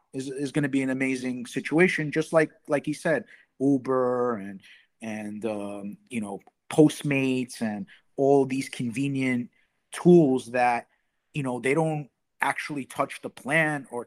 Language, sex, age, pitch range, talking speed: English, male, 30-49, 120-145 Hz, 150 wpm